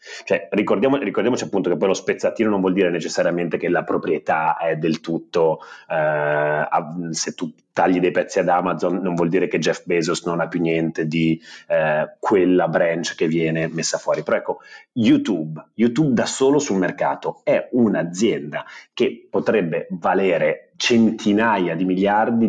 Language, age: Italian, 30-49